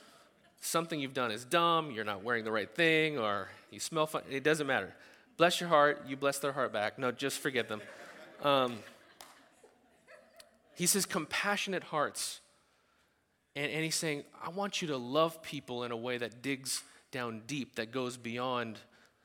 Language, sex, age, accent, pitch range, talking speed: English, male, 30-49, American, 120-165 Hz, 170 wpm